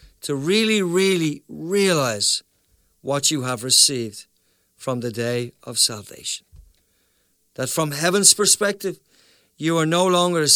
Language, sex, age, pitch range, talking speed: English, male, 50-69, 135-180 Hz, 125 wpm